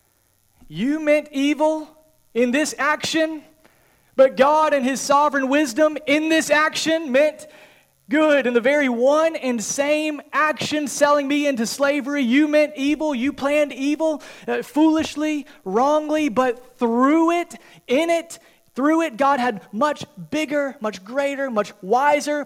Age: 30-49